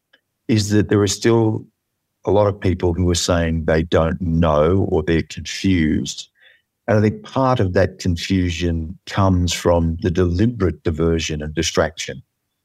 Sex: male